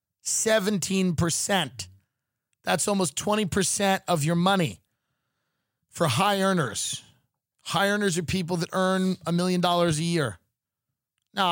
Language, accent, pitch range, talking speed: English, American, 135-190 Hz, 110 wpm